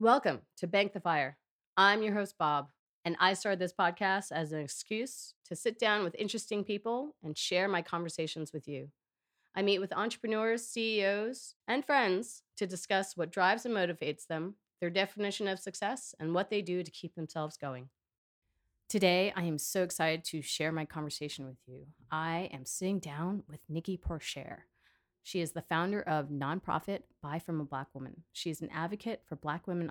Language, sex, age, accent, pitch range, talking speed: English, female, 30-49, American, 155-205 Hz, 185 wpm